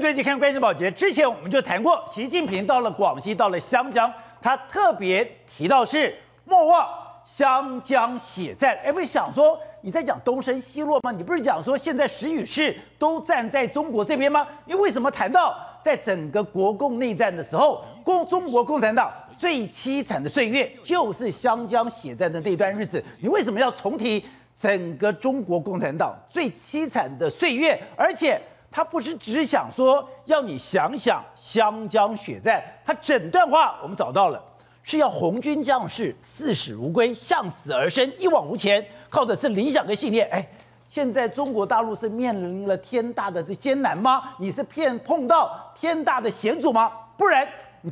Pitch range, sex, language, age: 225-305 Hz, male, Chinese, 50-69